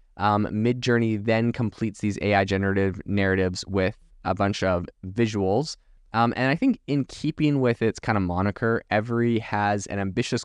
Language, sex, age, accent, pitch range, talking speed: English, male, 20-39, American, 95-115 Hz, 160 wpm